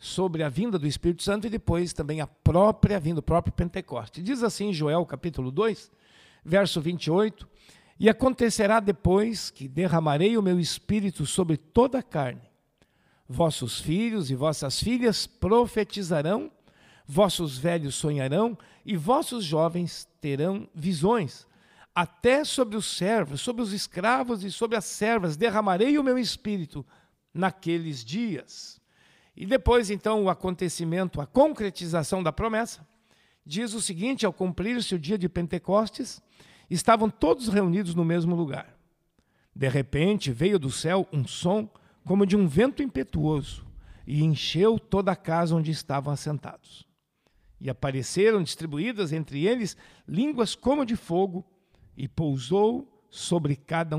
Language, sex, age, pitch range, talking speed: Portuguese, male, 60-79, 160-215 Hz, 135 wpm